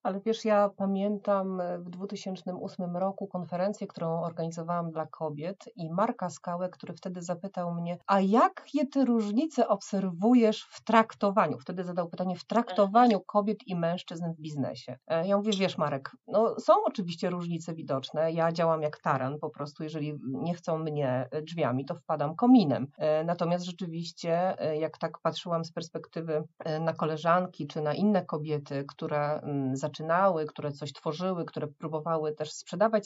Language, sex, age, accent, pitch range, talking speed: Polish, female, 40-59, native, 160-205 Hz, 150 wpm